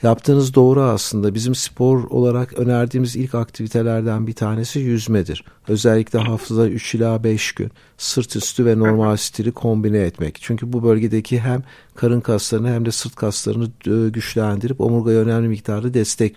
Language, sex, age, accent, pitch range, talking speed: Turkish, male, 50-69, native, 110-130 Hz, 145 wpm